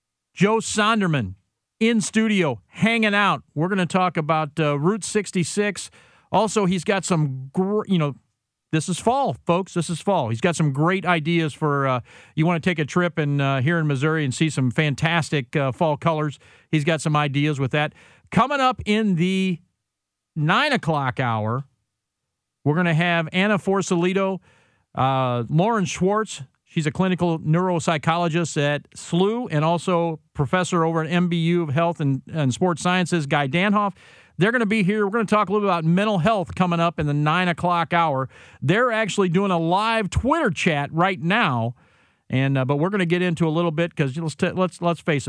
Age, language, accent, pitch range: 50-69, English, American, 145-185 Hz